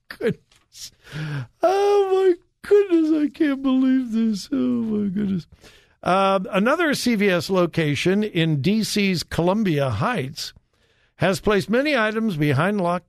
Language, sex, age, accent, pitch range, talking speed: English, male, 60-79, American, 125-205 Hz, 115 wpm